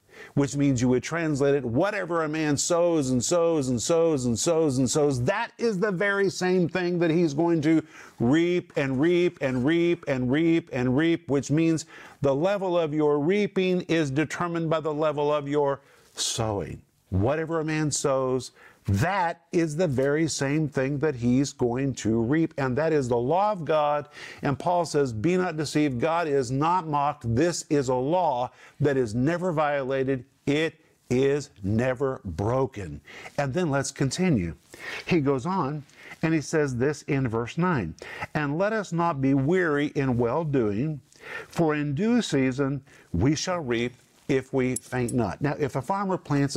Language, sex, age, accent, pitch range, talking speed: English, male, 50-69, American, 130-160 Hz, 175 wpm